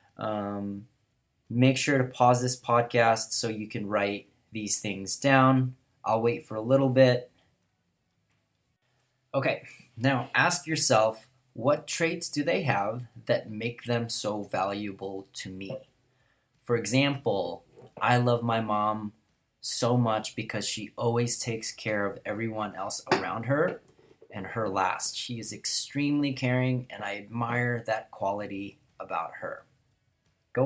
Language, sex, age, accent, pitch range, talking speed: English, male, 30-49, American, 105-125 Hz, 135 wpm